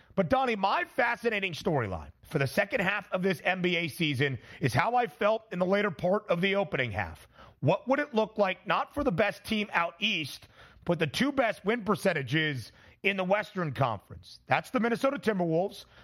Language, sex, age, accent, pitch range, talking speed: English, male, 30-49, American, 160-215 Hz, 190 wpm